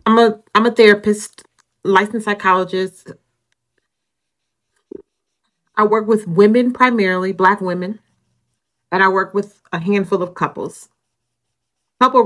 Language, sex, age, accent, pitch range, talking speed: English, female, 40-59, American, 125-205 Hz, 115 wpm